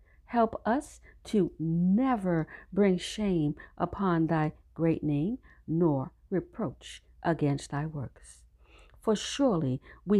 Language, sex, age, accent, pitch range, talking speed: English, female, 50-69, American, 135-210 Hz, 105 wpm